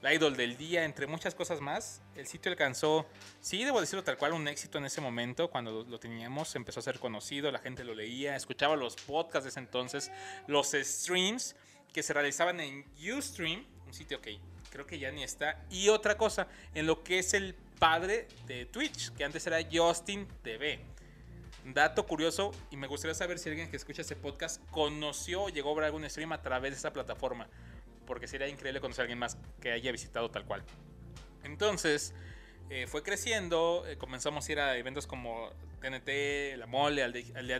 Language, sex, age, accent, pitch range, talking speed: Spanish, male, 30-49, Mexican, 130-170 Hz, 195 wpm